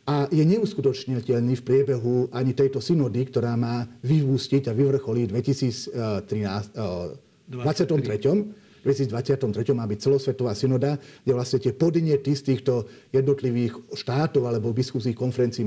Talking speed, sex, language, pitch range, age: 125 wpm, male, Slovak, 125-175 Hz, 50-69